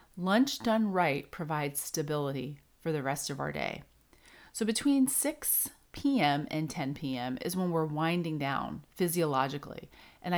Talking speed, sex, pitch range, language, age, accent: 145 wpm, female, 145-180 Hz, English, 30-49, American